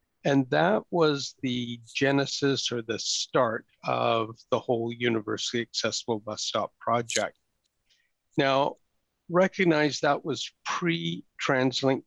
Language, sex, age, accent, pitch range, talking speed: English, male, 60-79, American, 120-145 Hz, 105 wpm